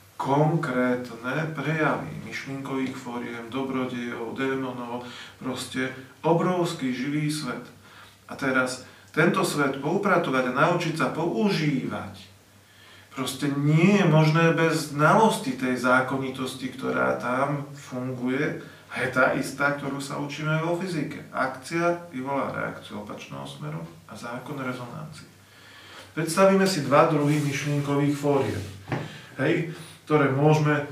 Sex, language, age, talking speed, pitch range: male, Slovak, 40-59, 110 wpm, 130-160 Hz